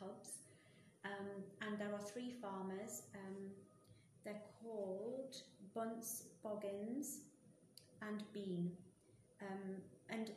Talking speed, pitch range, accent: 85 wpm, 195-225 Hz, British